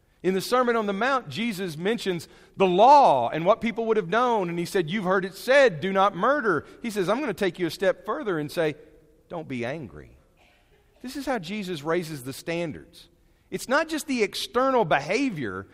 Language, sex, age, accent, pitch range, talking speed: English, male, 40-59, American, 140-205 Hz, 205 wpm